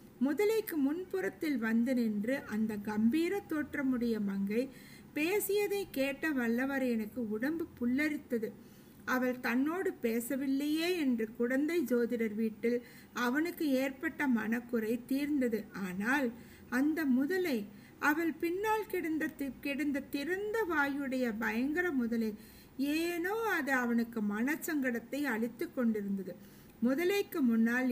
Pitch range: 235-310 Hz